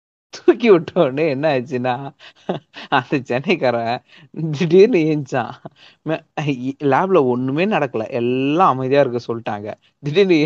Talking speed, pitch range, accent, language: 90 wpm, 125-160 Hz, native, Tamil